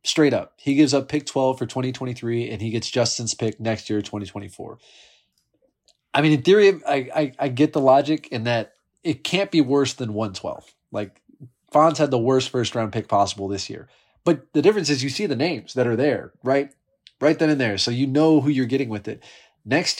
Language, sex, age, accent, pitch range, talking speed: English, male, 20-39, American, 110-130 Hz, 215 wpm